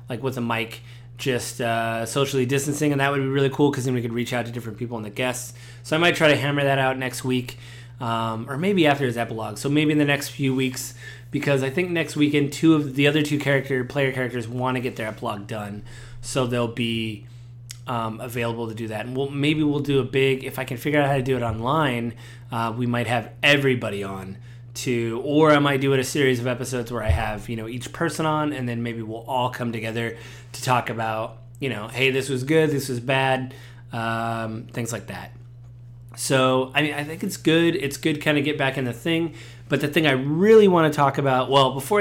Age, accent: 20-39, American